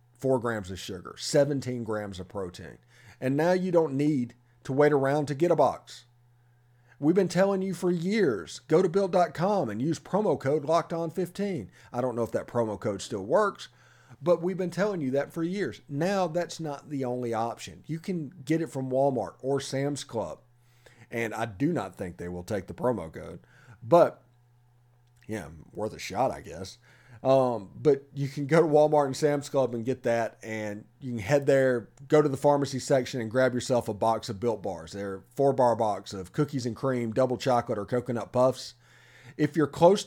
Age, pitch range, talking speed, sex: 40-59, 115-145 Hz, 200 wpm, male